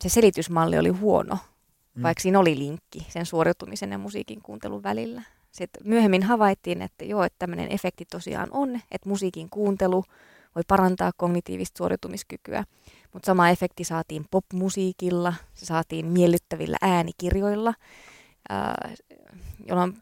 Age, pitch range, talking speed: 20-39, 160-190 Hz, 125 wpm